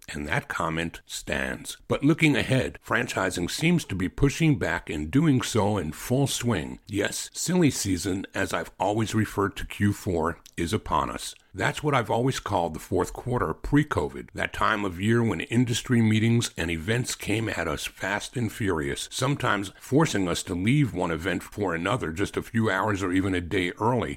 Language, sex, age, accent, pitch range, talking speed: English, male, 60-79, American, 90-120 Hz, 180 wpm